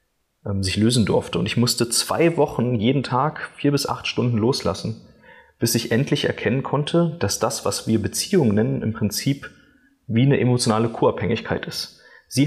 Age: 30-49